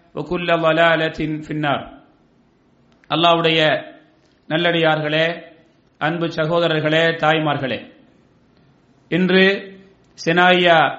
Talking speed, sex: 105 wpm, male